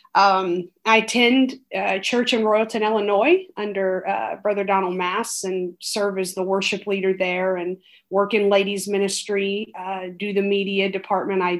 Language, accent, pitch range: English, American, 190-230 Hz